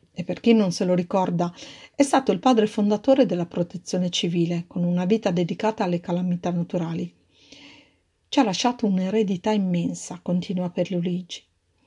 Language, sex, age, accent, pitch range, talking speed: Italian, female, 50-69, native, 180-210 Hz, 150 wpm